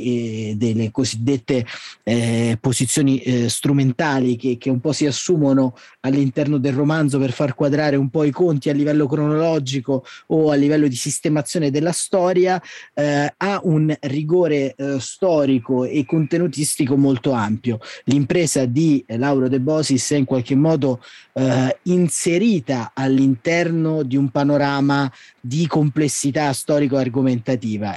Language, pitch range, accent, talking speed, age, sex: Italian, 130-155 Hz, native, 135 wpm, 30-49, male